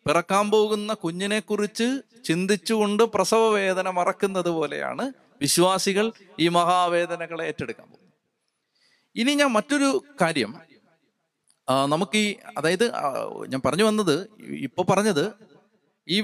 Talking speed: 105 wpm